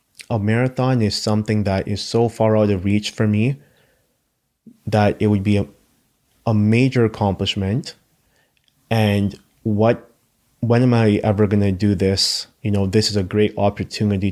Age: 20-39